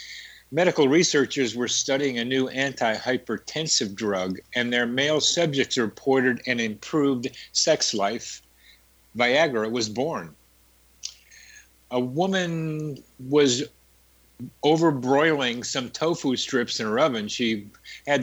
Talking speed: 105 wpm